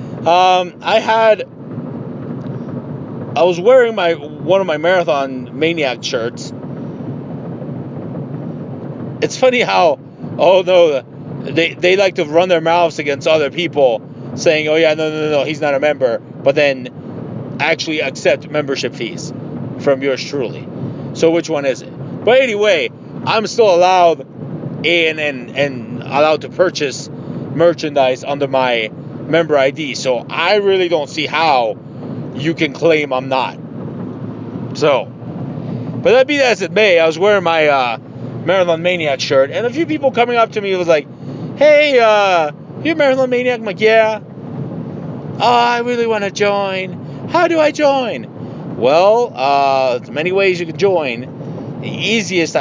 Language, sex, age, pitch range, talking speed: English, male, 30-49, 140-195 Hz, 150 wpm